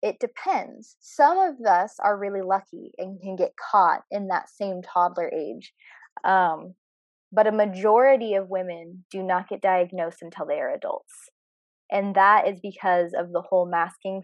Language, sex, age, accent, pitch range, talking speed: English, female, 20-39, American, 185-220 Hz, 165 wpm